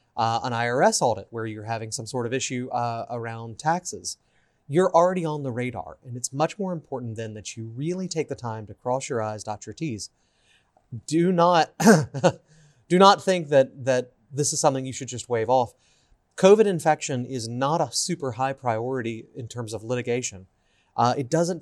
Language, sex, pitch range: English, male, 120-170 Hz